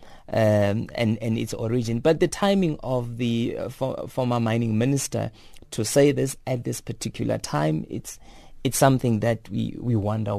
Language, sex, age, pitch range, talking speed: English, male, 30-49, 110-135 Hz, 170 wpm